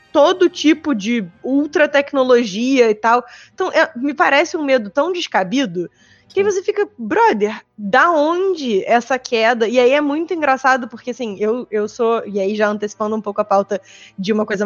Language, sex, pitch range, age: Portuguese, female, 230-310 Hz, 20-39